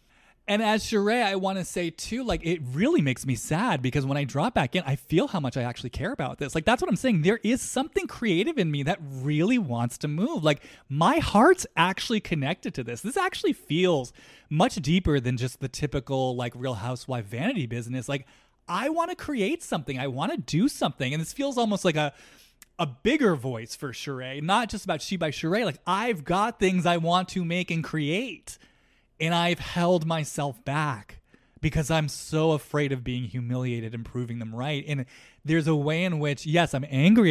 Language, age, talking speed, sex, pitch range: English, 20-39, 205 wpm, male, 130-185 Hz